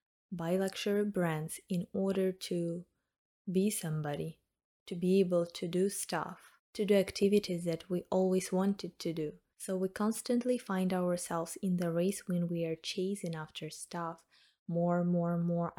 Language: English